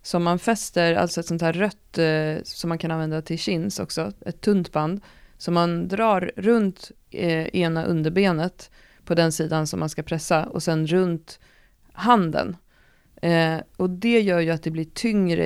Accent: native